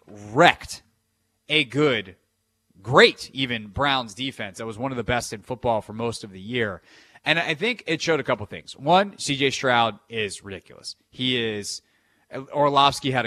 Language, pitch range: English, 105-130 Hz